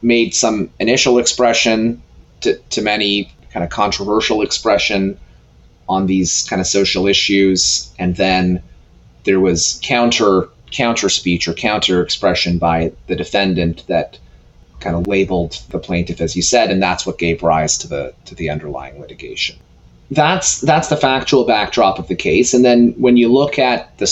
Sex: male